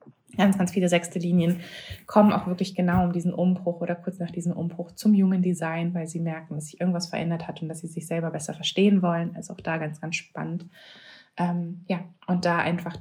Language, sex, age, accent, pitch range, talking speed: German, female, 20-39, German, 165-185 Hz, 215 wpm